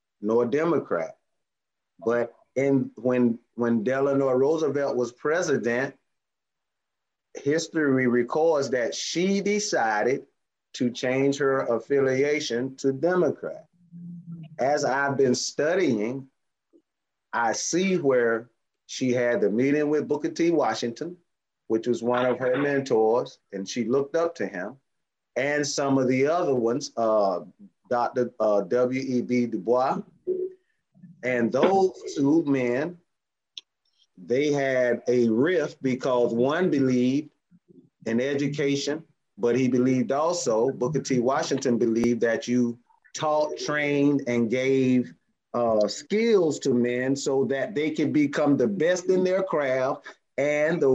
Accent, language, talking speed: American, Russian, 120 wpm